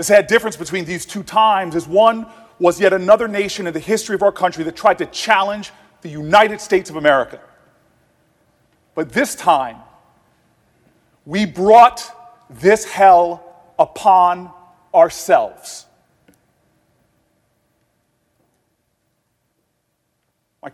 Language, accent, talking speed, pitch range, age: English, American, 110 wpm, 185-255 Hz, 40-59